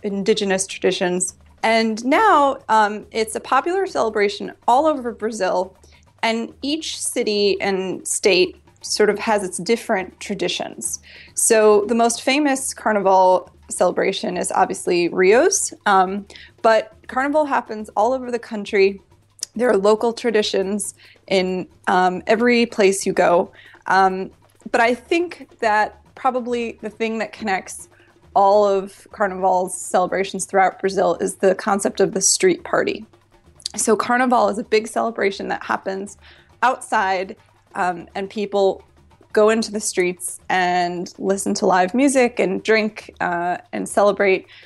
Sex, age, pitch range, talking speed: female, 20-39, 190-230 Hz, 135 wpm